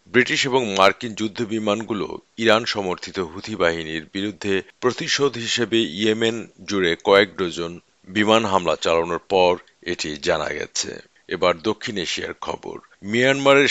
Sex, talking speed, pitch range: male, 45 wpm, 95-115 Hz